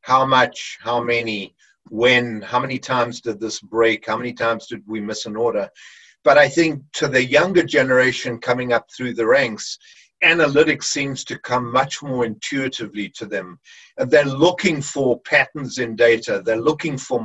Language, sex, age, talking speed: English, male, 50-69, 175 wpm